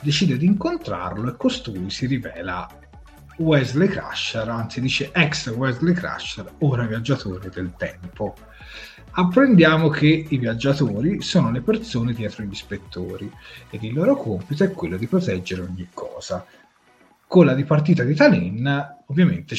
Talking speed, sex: 135 wpm, male